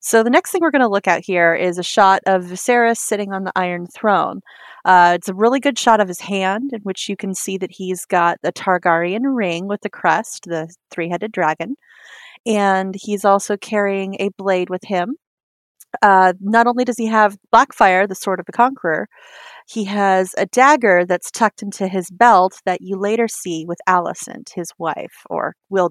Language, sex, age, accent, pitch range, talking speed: English, female, 30-49, American, 180-225 Hz, 195 wpm